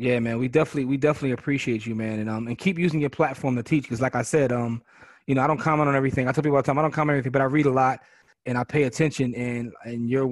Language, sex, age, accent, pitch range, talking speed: English, male, 20-39, American, 120-145 Hz, 310 wpm